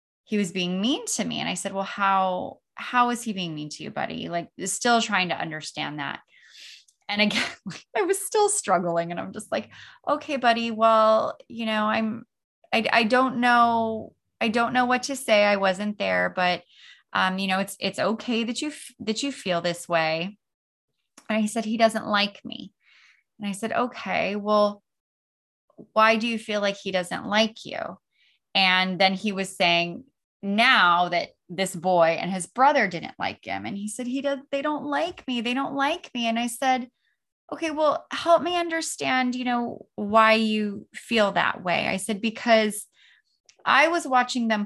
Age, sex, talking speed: 20-39, female, 185 wpm